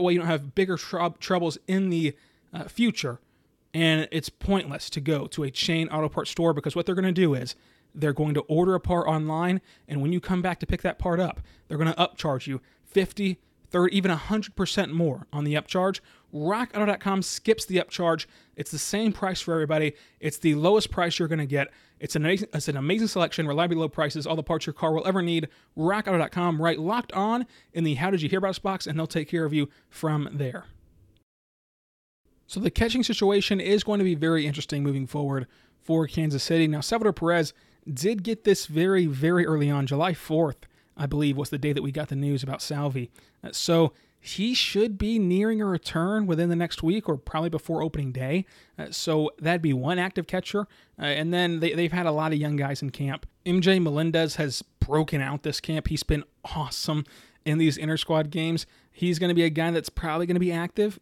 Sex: male